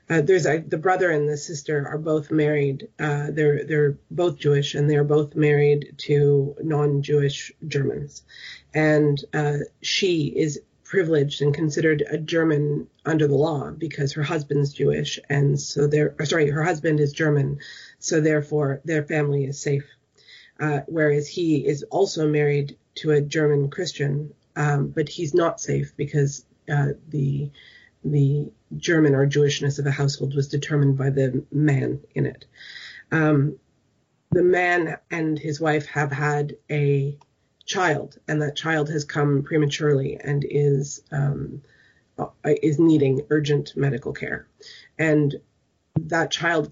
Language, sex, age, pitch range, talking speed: English, female, 30-49, 140-155 Hz, 145 wpm